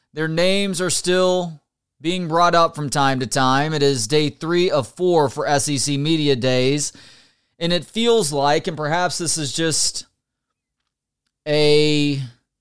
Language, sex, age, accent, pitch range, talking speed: English, male, 30-49, American, 135-175 Hz, 150 wpm